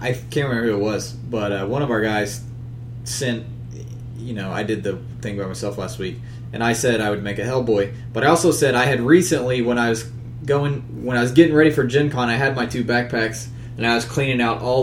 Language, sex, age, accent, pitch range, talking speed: English, male, 20-39, American, 115-130 Hz, 245 wpm